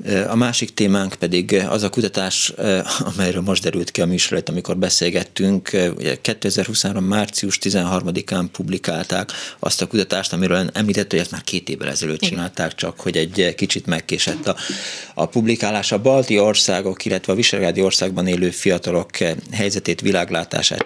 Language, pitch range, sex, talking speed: Hungarian, 85-100 Hz, male, 145 wpm